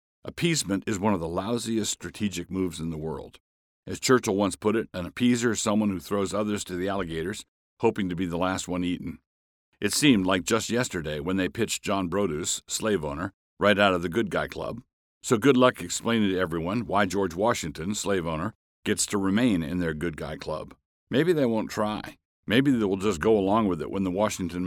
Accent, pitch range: American, 85-105 Hz